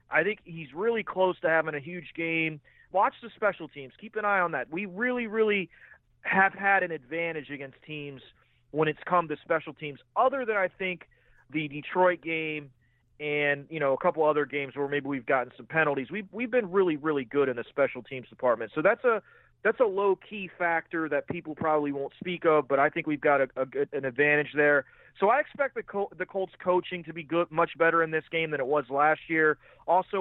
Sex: male